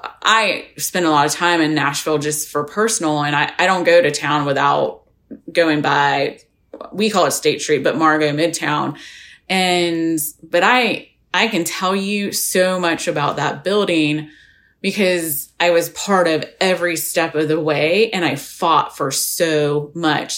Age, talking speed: 20-39, 170 wpm